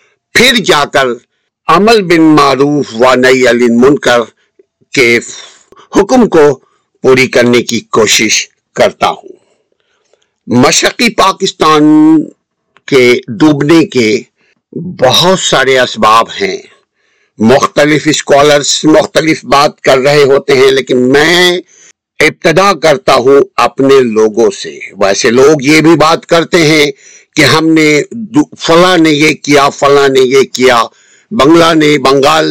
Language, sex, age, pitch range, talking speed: Urdu, male, 60-79, 130-210 Hz, 120 wpm